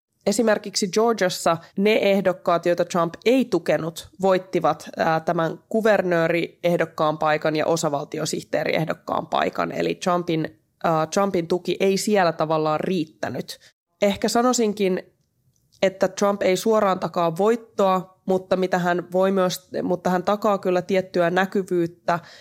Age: 20-39